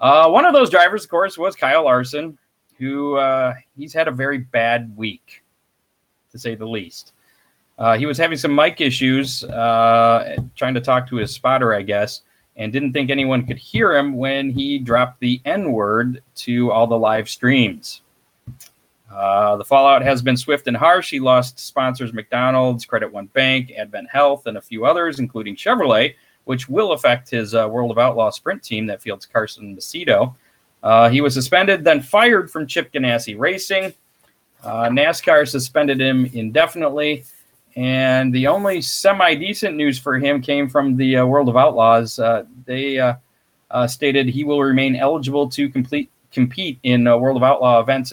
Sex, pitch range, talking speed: male, 120-140 Hz, 170 wpm